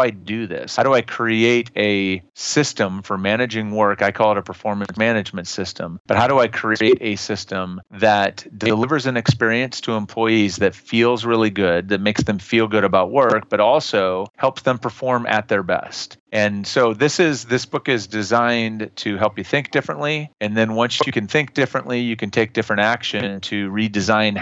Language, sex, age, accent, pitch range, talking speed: English, male, 30-49, American, 100-120 Hz, 190 wpm